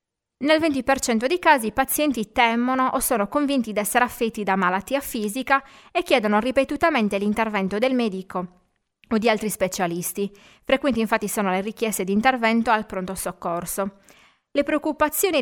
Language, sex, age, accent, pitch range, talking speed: Italian, female, 20-39, native, 195-260 Hz, 150 wpm